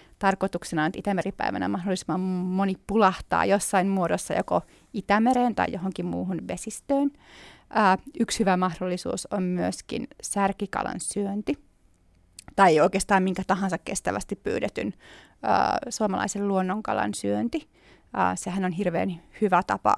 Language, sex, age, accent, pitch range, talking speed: Finnish, female, 30-49, native, 185-215 Hz, 110 wpm